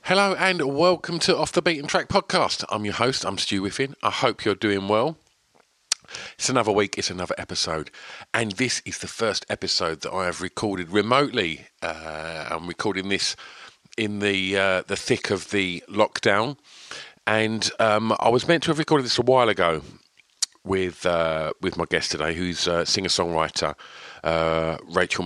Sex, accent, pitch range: male, British, 90-115 Hz